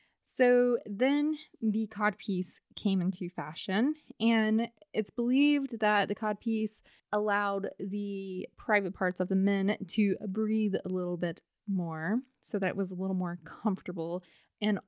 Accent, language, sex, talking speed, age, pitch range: American, English, female, 140 wpm, 20-39, 185-225 Hz